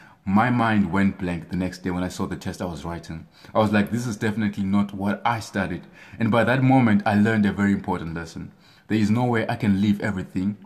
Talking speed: 240 wpm